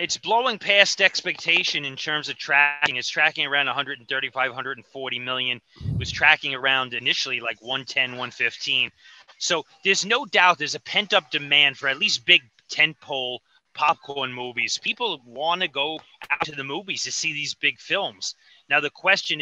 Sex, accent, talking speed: male, American, 165 wpm